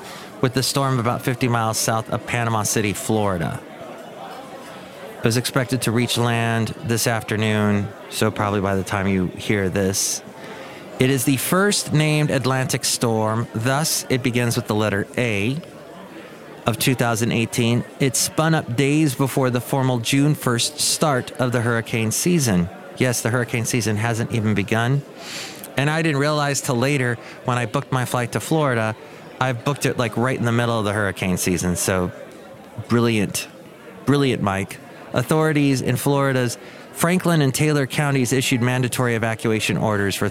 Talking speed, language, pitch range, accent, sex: 155 wpm, English, 110-135 Hz, American, male